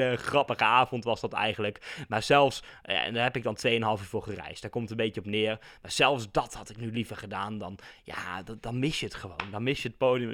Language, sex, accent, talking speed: Dutch, male, Dutch, 260 wpm